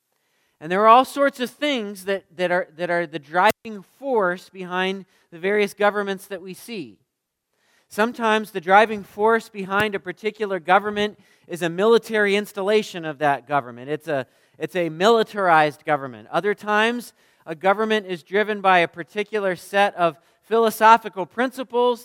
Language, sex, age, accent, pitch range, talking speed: English, male, 40-59, American, 175-220 Hz, 145 wpm